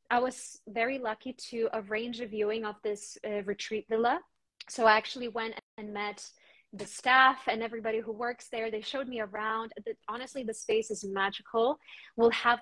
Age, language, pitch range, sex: 20-39, English, 215-240 Hz, female